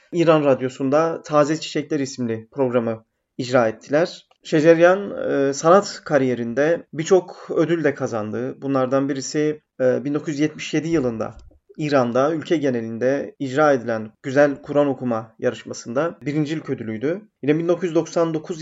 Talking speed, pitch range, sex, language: 105 wpm, 130-160 Hz, male, Turkish